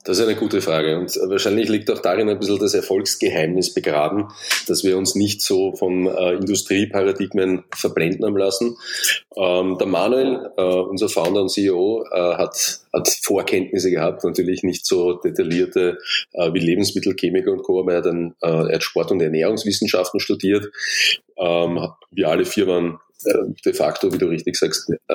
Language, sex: German, male